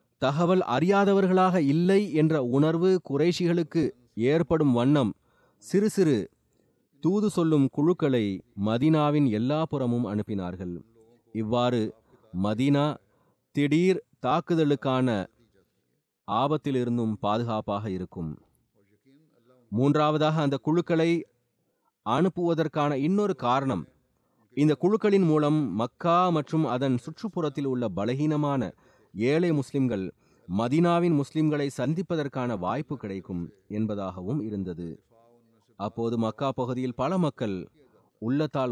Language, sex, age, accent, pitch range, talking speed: Tamil, male, 30-49, native, 110-155 Hz, 85 wpm